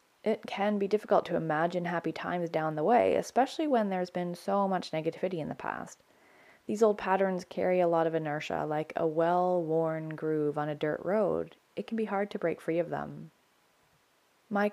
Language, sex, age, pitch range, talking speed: English, female, 20-39, 160-195 Hz, 190 wpm